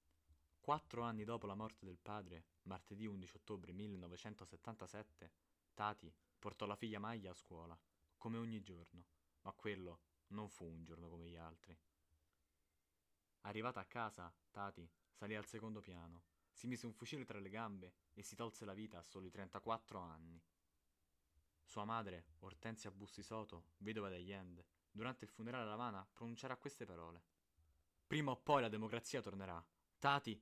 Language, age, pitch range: Italian, 20-39, 85-110 Hz